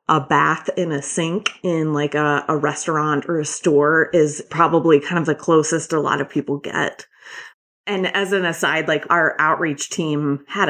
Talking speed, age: 185 wpm, 30-49